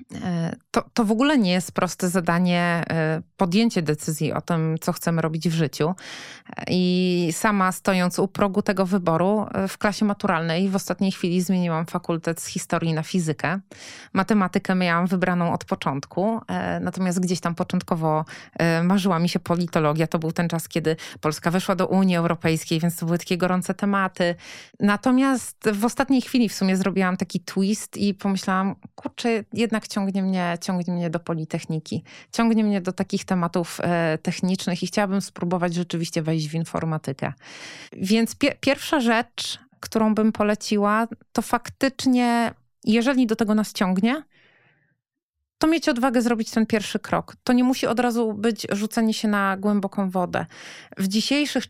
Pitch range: 175-220 Hz